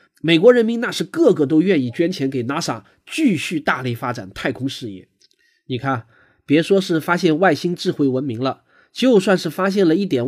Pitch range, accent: 120-175 Hz, native